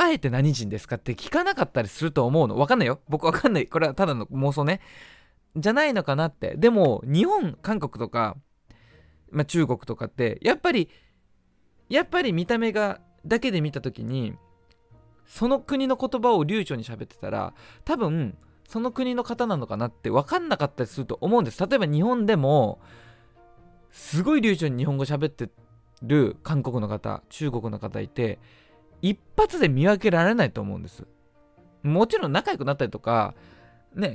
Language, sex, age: Japanese, male, 20-39